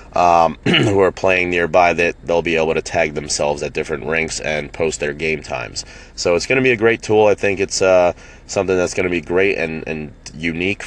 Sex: male